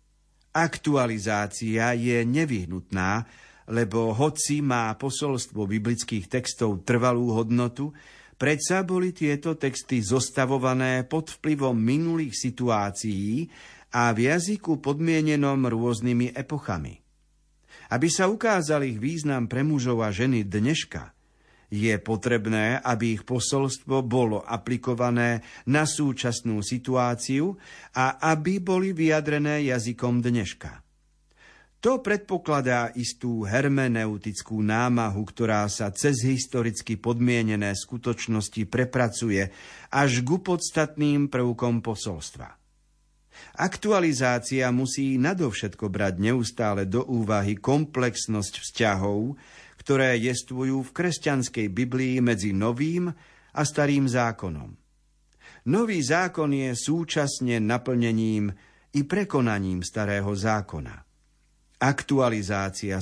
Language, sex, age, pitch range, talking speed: Slovak, male, 50-69, 110-140 Hz, 95 wpm